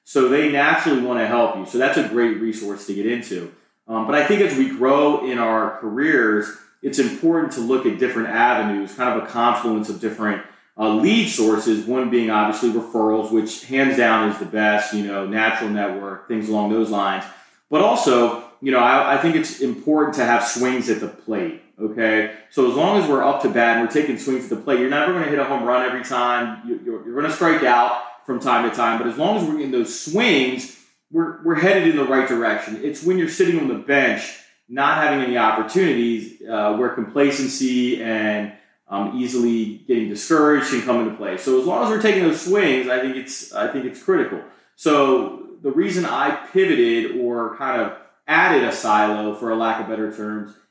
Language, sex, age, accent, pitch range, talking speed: English, male, 30-49, American, 110-140 Hz, 215 wpm